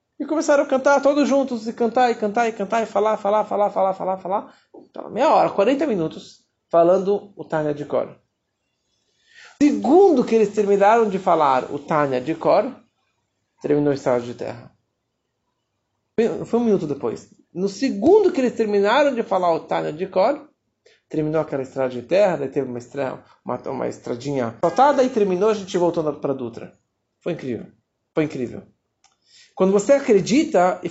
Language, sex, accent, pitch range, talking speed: Portuguese, male, Brazilian, 170-260 Hz, 170 wpm